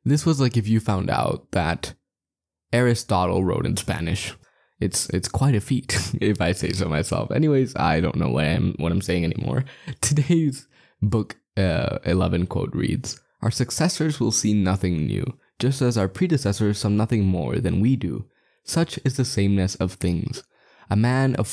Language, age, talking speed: English, 10-29, 170 wpm